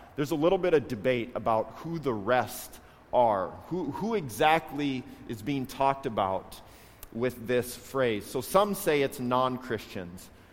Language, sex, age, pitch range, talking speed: English, male, 40-59, 130-175 Hz, 150 wpm